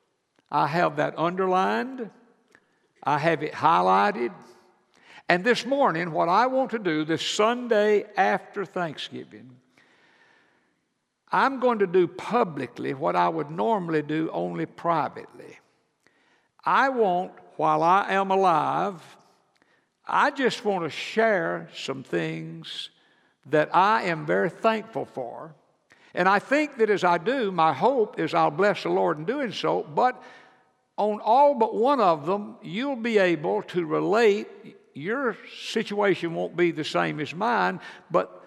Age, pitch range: 60-79, 170-225 Hz